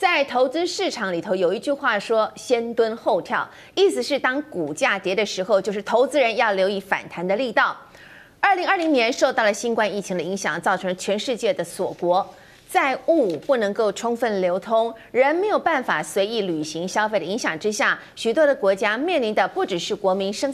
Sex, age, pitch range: female, 30-49, 190-275 Hz